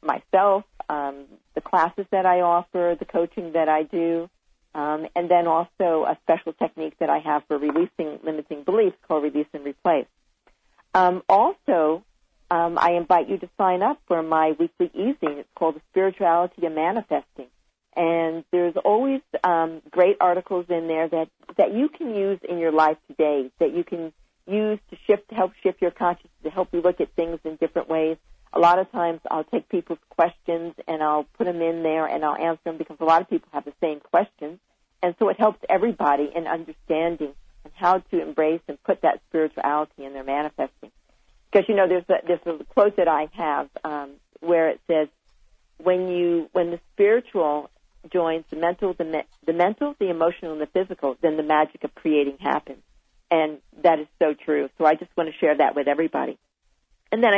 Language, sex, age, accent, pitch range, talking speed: English, female, 50-69, American, 155-180 Hz, 190 wpm